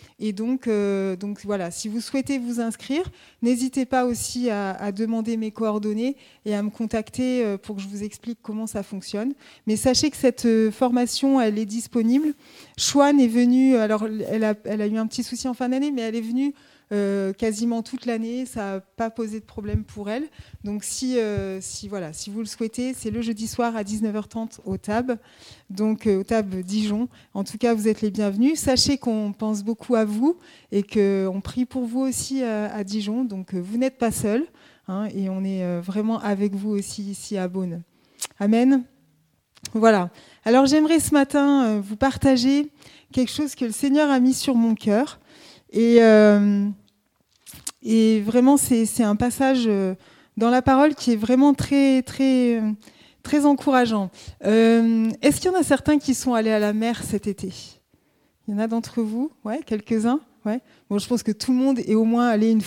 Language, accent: French, French